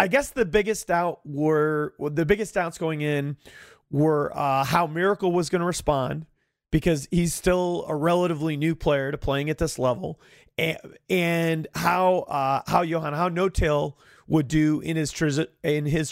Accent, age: American, 30-49